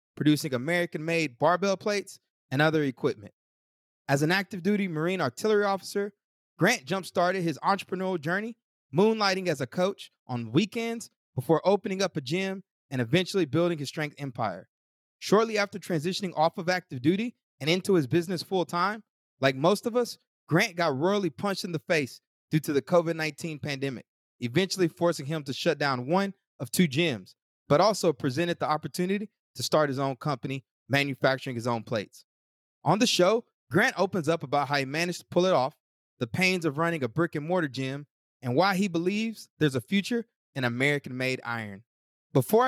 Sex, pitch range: male, 140-190 Hz